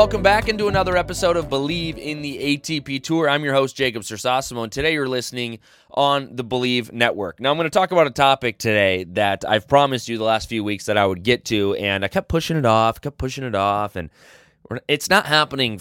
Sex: male